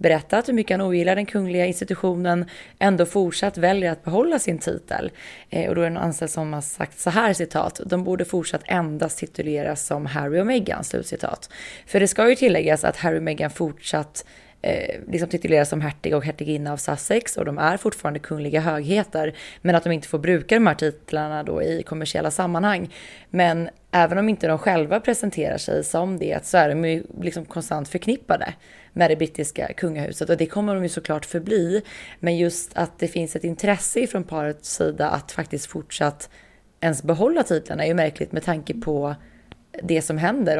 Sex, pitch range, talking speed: female, 155-185 Hz, 190 wpm